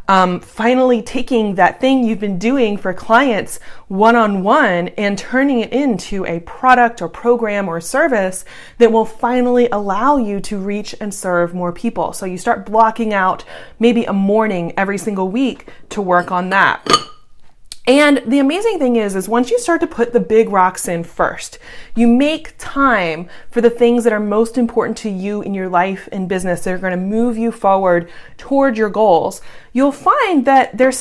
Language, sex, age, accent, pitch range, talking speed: English, female, 20-39, American, 195-255 Hz, 180 wpm